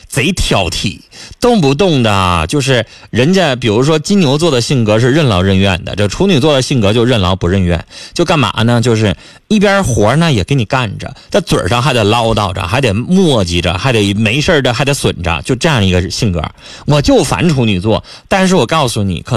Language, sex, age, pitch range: Chinese, male, 30-49, 105-165 Hz